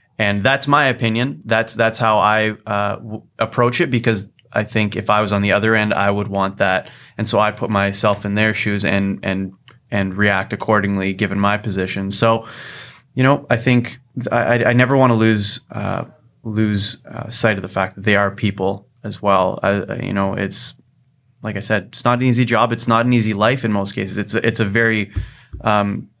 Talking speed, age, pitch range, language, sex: 210 wpm, 20-39, 100-115 Hz, English, male